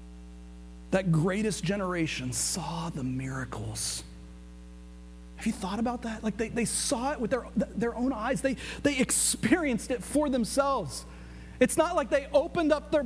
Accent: American